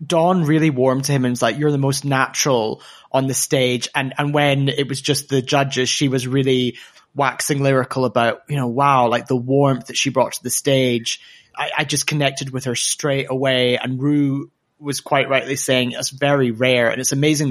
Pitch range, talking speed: 130-155 Hz, 210 wpm